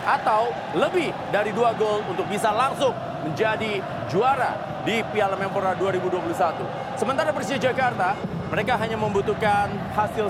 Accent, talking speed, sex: native, 120 wpm, male